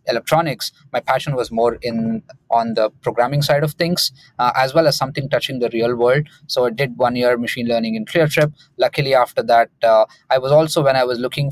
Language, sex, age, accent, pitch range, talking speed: English, male, 20-39, Indian, 120-150 Hz, 220 wpm